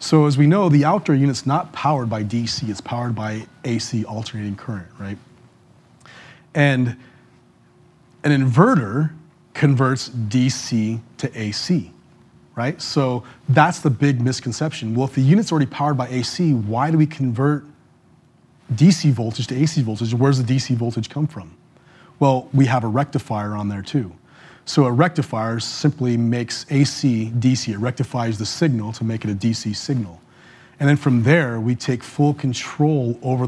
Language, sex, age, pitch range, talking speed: English, male, 30-49, 115-145 Hz, 160 wpm